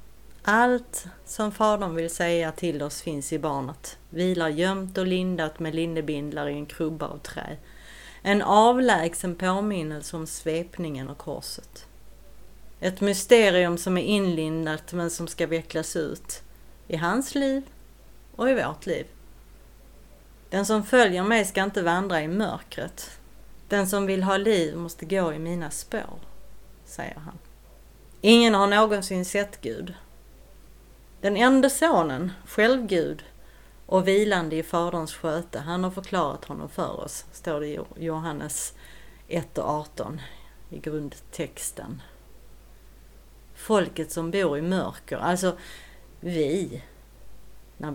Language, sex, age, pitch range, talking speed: Swedish, female, 30-49, 160-195 Hz, 130 wpm